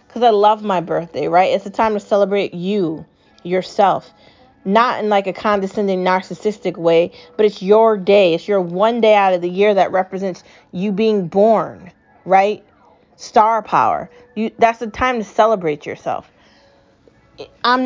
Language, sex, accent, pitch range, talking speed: English, female, American, 190-235 Hz, 160 wpm